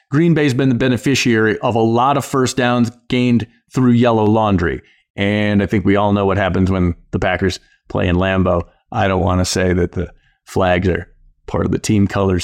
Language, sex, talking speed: English, male, 210 wpm